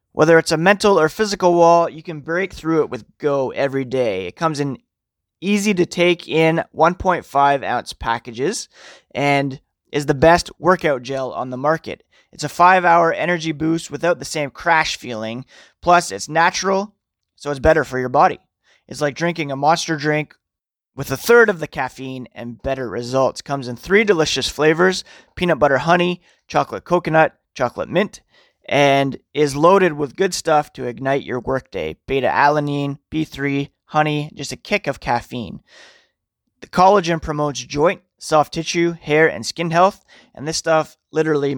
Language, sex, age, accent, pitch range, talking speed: English, male, 30-49, American, 135-170 Hz, 160 wpm